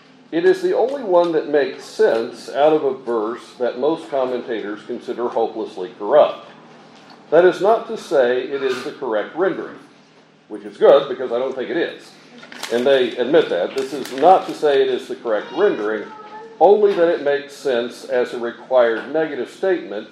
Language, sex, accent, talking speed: English, male, American, 180 wpm